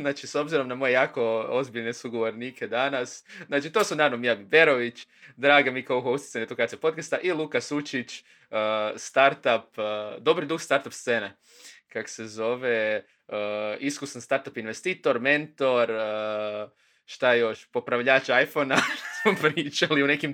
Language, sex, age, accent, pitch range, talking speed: Croatian, male, 20-39, native, 110-145 Hz, 125 wpm